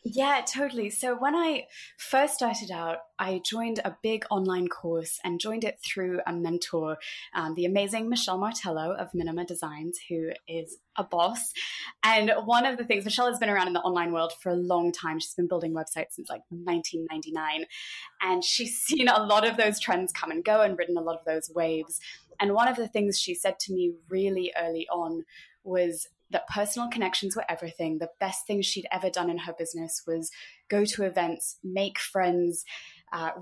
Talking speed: 195 wpm